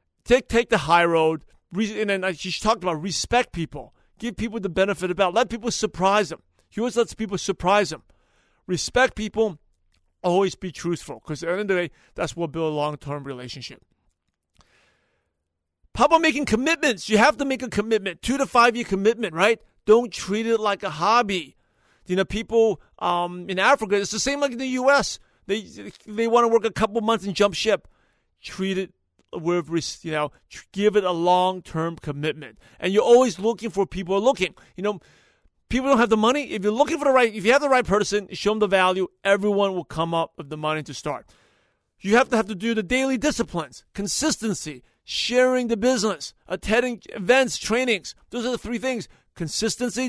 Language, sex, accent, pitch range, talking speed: English, male, American, 170-235 Hz, 195 wpm